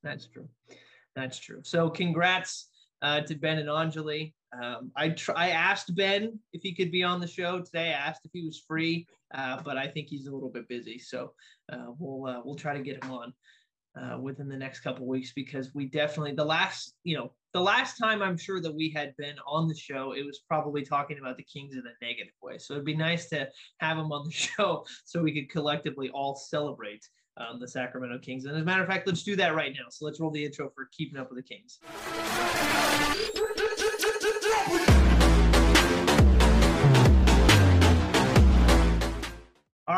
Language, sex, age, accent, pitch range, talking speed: English, male, 20-39, American, 130-175 Hz, 195 wpm